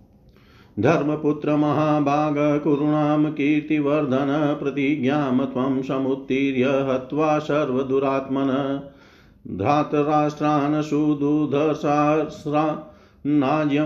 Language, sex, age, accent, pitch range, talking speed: Hindi, male, 50-69, native, 135-150 Hz, 45 wpm